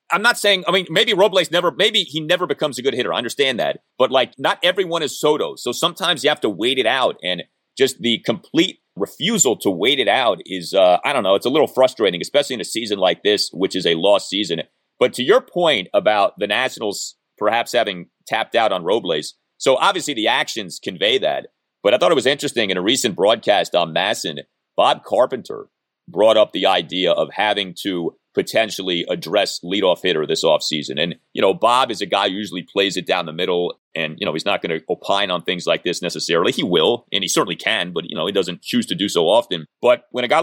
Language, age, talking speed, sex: English, 30-49, 230 wpm, male